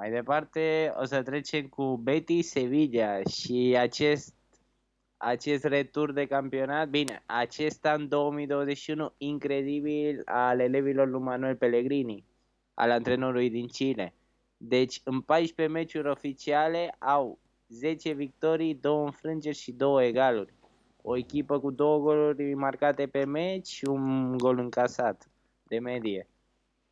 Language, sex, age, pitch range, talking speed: Romanian, male, 20-39, 130-150 Hz, 125 wpm